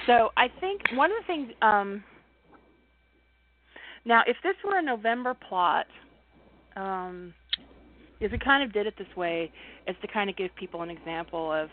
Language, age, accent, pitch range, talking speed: English, 40-59, American, 175-230 Hz, 165 wpm